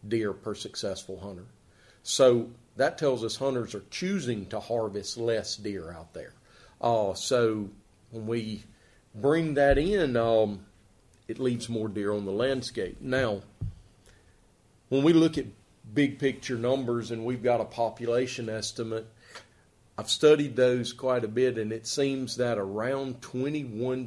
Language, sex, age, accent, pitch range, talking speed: English, male, 40-59, American, 105-125 Hz, 145 wpm